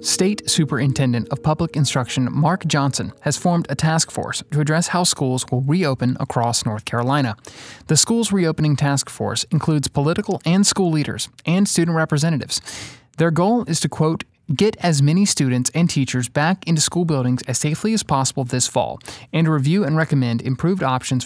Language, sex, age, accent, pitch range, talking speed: English, male, 30-49, American, 130-170 Hz, 170 wpm